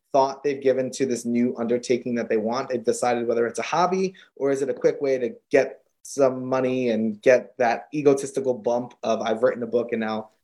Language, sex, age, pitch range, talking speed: English, male, 20-39, 125-155 Hz, 220 wpm